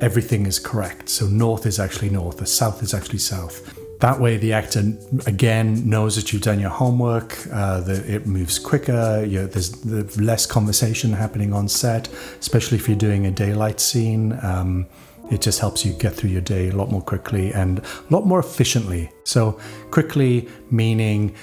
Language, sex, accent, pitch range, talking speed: English, male, British, 100-115 Hz, 175 wpm